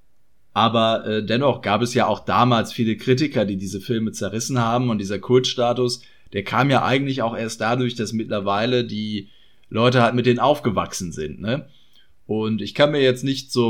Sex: male